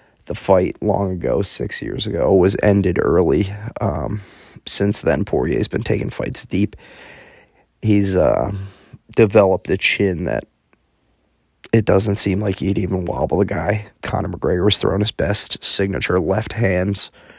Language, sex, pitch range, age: English, male, 95-105 Hz, 20-39